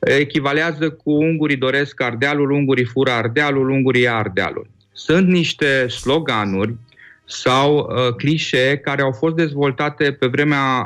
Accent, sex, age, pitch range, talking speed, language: native, male, 30-49, 115-145 Hz, 125 wpm, Romanian